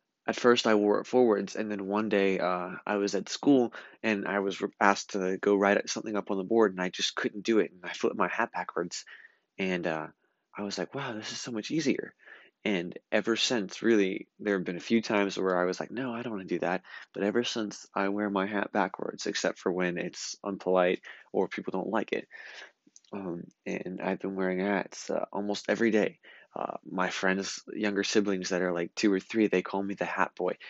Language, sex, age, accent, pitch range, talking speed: English, male, 20-39, American, 95-110 Hz, 230 wpm